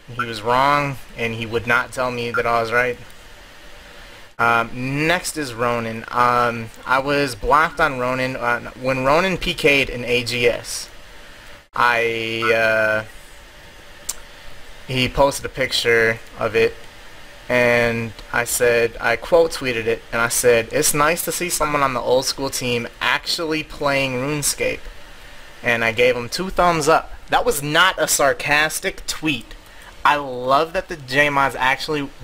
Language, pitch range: English, 115-150 Hz